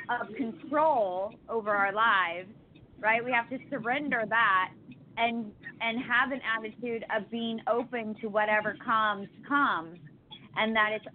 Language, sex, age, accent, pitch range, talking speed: English, female, 20-39, American, 200-245 Hz, 140 wpm